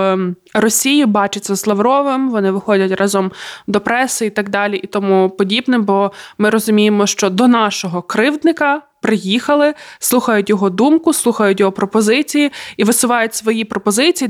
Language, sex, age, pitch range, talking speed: Ukrainian, female, 20-39, 205-240 Hz, 140 wpm